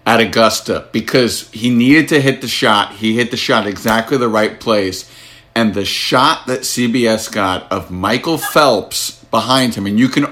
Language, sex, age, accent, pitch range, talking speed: English, male, 50-69, American, 110-135 Hz, 180 wpm